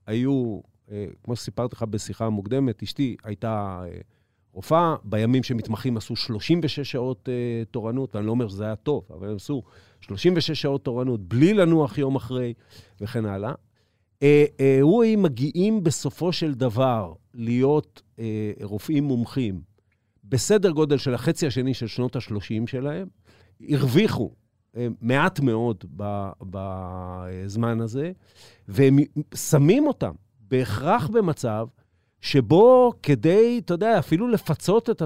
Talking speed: 115 wpm